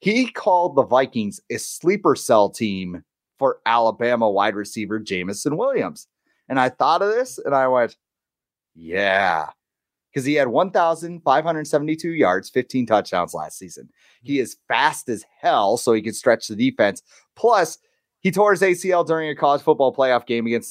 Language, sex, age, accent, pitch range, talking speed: English, male, 30-49, American, 115-160 Hz, 160 wpm